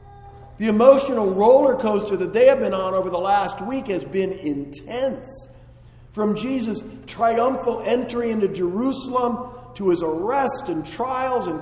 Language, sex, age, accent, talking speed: English, male, 50-69, American, 145 wpm